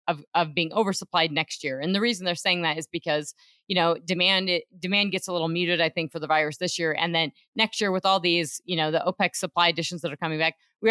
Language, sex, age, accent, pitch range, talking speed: English, female, 30-49, American, 155-185 Hz, 260 wpm